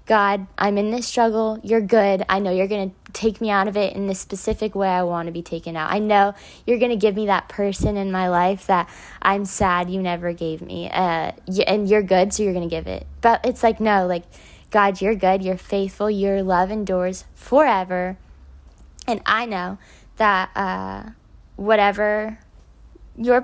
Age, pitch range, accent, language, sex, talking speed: 10-29, 185-215 Hz, American, English, female, 195 wpm